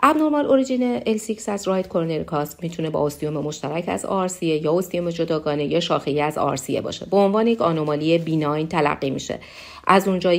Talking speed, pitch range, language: 185 wpm, 150-200 Hz, Persian